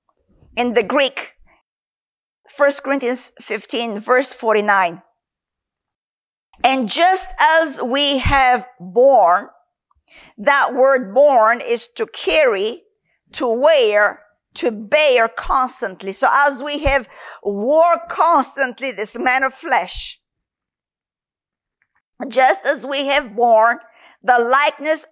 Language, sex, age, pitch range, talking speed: English, female, 50-69, 245-365 Hz, 100 wpm